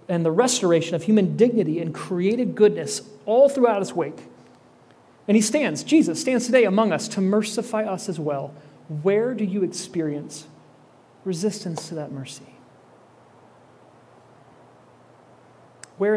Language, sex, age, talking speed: English, male, 40-59, 130 wpm